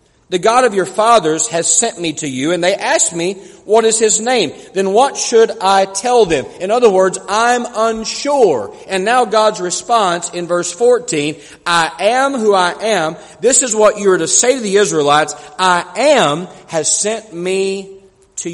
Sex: male